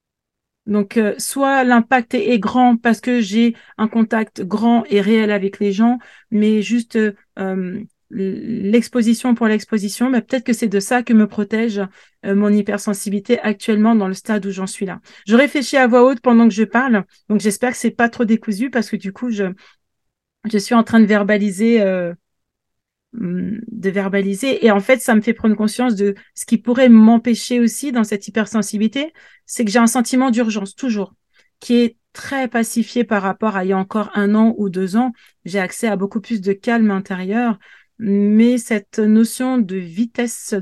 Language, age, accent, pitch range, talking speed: French, 40-59, French, 205-240 Hz, 190 wpm